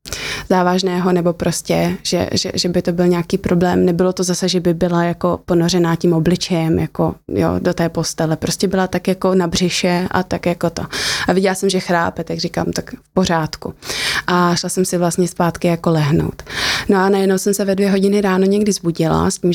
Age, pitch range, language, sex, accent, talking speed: 20-39, 175-190 Hz, Czech, female, native, 205 wpm